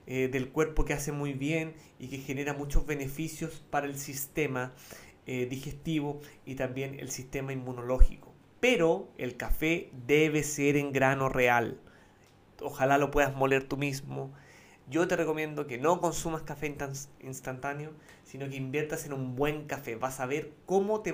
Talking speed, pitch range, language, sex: 160 wpm, 135-160 Hz, Spanish, male